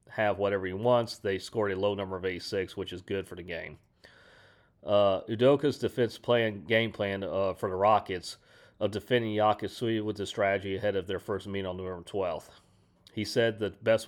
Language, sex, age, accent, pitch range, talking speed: English, male, 40-59, American, 100-115 Hz, 200 wpm